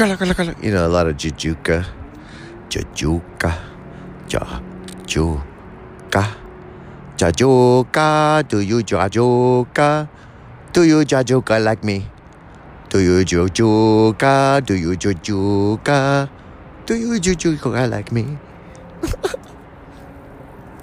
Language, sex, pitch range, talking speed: English, male, 80-120 Hz, 85 wpm